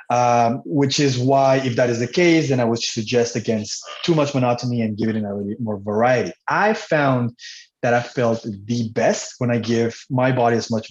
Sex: male